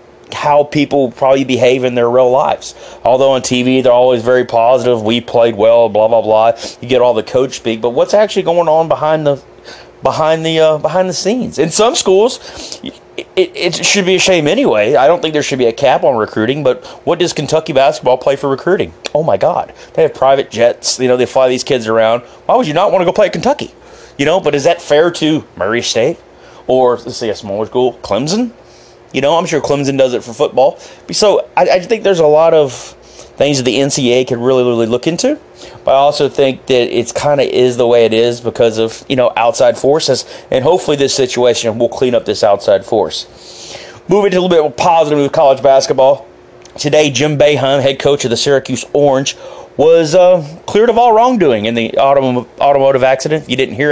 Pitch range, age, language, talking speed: 125-155 Hz, 30-49, English, 215 wpm